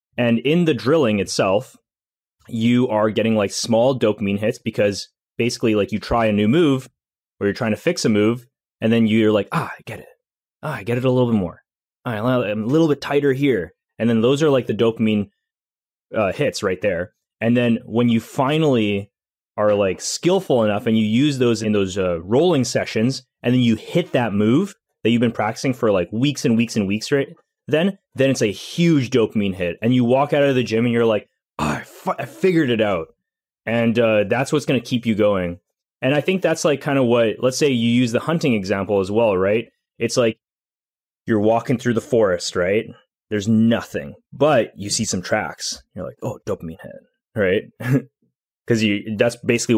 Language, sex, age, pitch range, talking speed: English, male, 20-39, 105-125 Hz, 205 wpm